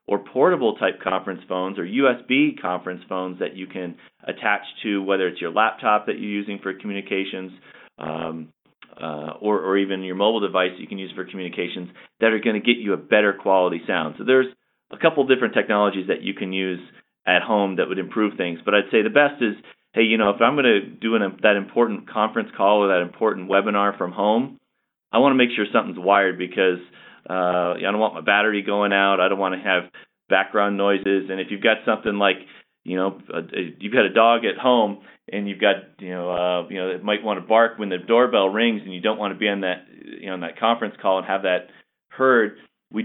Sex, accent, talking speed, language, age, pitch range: male, American, 225 wpm, English, 30-49, 95-110 Hz